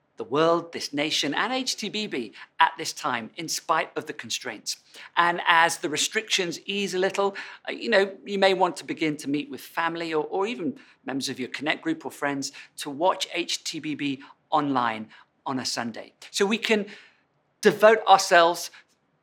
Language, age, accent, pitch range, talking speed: English, 50-69, British, 140-190 Hz, 170 wpm